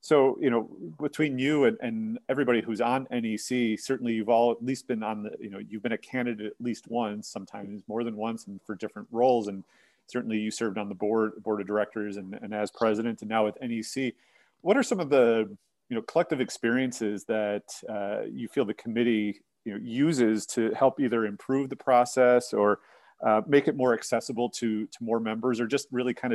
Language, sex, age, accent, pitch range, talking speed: English, male, 30-49, American, 110-125 Hz, 210 wpm